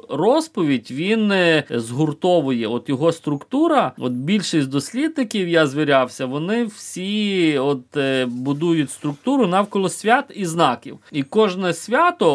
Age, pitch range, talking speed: 30-49, 130-175 Hz, 110 wpm